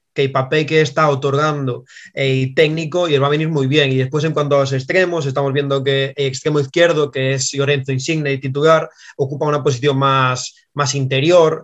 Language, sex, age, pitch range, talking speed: Spanish, male, 20-39, 135-160 Hz, 205 wpm